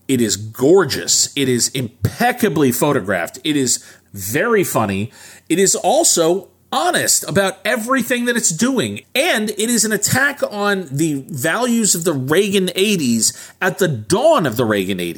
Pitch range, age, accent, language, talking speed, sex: 135-210 Hz, 40-59, American, English, 150 wpm, male